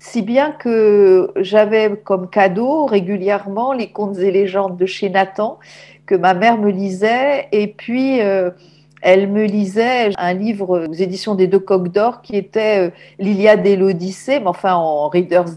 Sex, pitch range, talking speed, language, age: female, 185-235 Hz, 160 wpm, French, 50-69